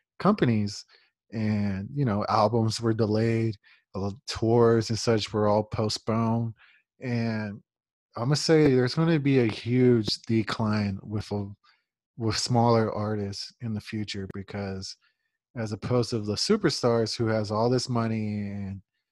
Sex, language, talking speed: male, English, 140 wpm